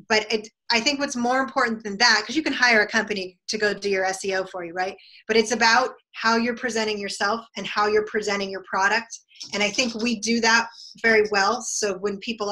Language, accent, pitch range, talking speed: English, American, 205-240 Hz, 220 wpm